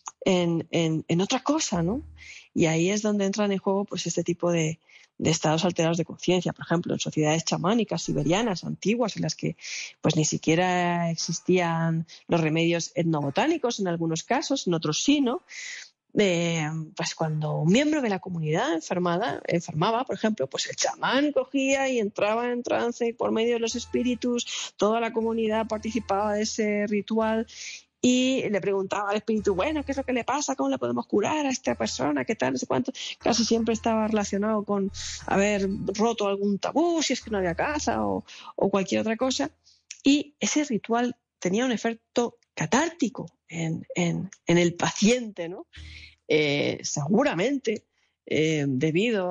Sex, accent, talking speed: female, Spanish, 170 wpm